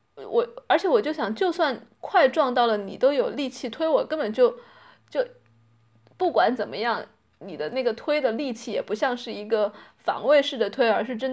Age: 20-39